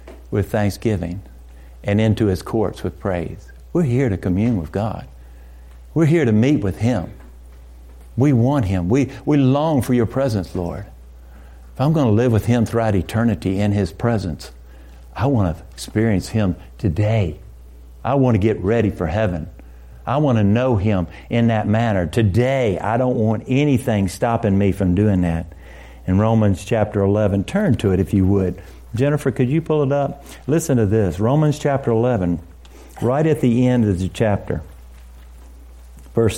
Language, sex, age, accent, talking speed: English, male, 50-69, American, 170 wpm